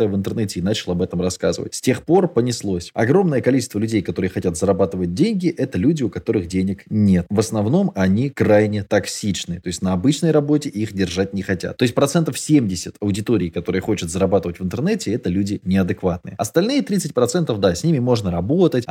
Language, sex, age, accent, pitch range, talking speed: Russian, male, 20-39, native, 95-140 Hz, 185 wpm